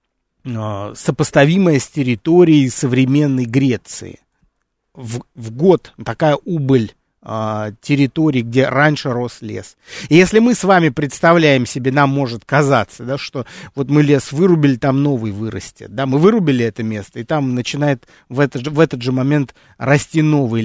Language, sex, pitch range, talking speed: Russian, male, 120-155 Hz, 150 wpm